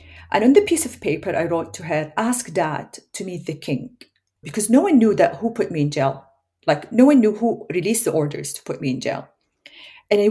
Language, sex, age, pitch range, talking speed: English, female, 40-59, 155-240 Hz, 240 wpm